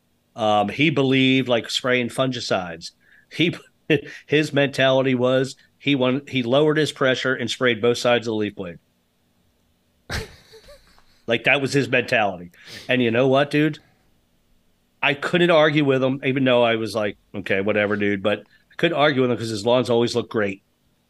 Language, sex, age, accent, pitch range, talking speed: English, male, 40-59, American, 110-130 Hz, 170 wpm